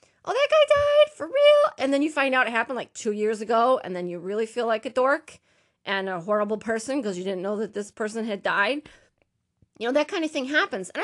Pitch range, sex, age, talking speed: 200-255 Hz, female, 30-49, 250 wpm